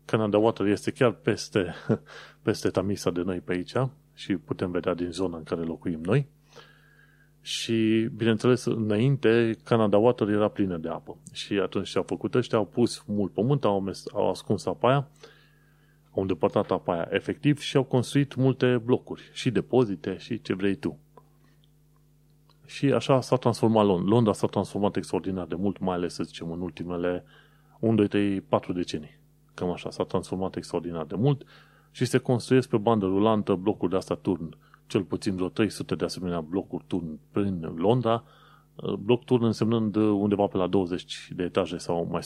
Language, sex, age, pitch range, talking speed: Romanian, male, 30-49, 95-130 Hz, 170 wpm